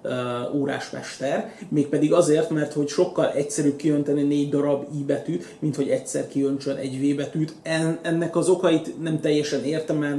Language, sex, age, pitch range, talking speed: Hungarian, male, 30-49, 140-160 Hz, 155 wpm